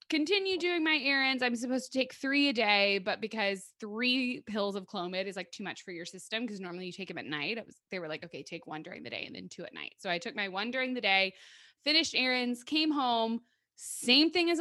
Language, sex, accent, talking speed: English, female, American, 255 wpm